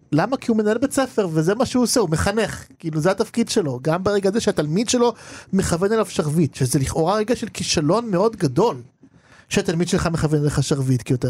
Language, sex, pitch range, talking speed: Hebrew, male, 140-195 Hz, 200 wpm